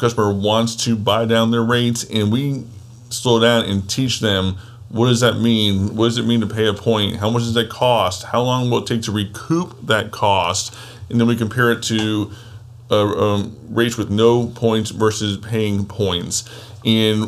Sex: male